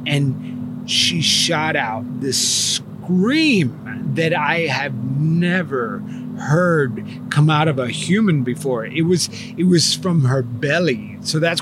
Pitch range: 130-170 Hz